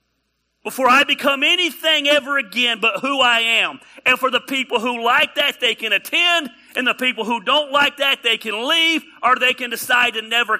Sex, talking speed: male, 205 wpm